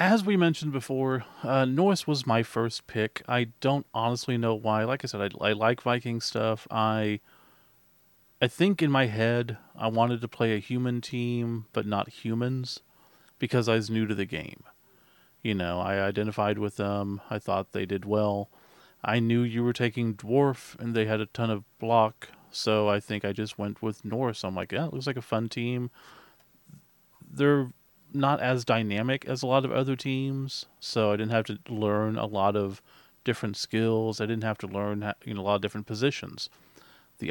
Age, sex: 40-59, male